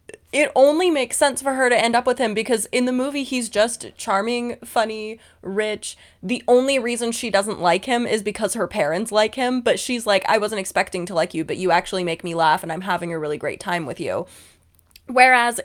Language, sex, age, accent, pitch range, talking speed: English, female, 20-39, American, 185-260 Hz, 220 wpm